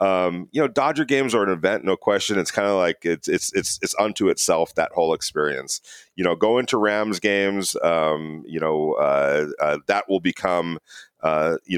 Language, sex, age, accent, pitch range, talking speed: English, male, 40-59, American, 80-105 Hz, 200 wpm